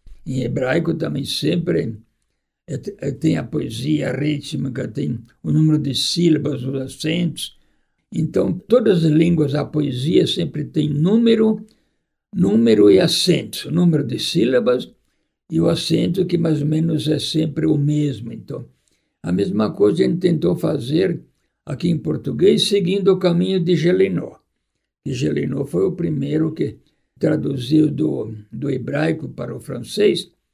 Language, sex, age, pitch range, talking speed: Portuguese, male, 60-79, 140-175 Hz, 145 wpm